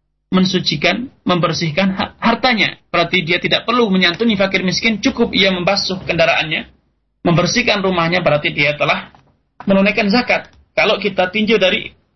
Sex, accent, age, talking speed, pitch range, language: male, native, 30-49, 125 wpm, 150-200 Hz, Indonesian